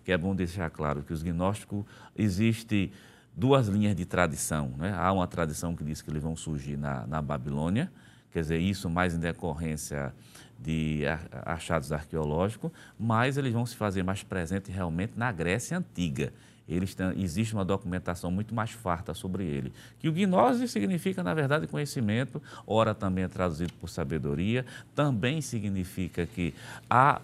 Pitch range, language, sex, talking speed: 90-125 Hz, Portuguese, male, 155 wpm